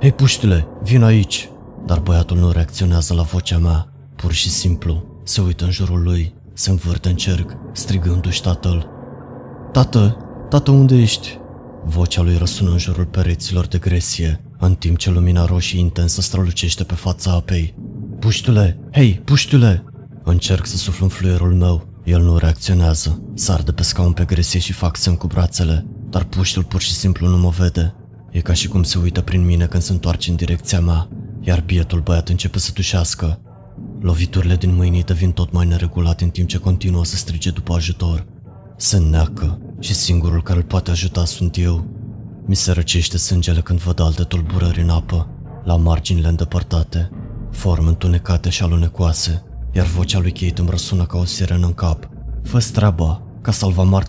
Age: 20-39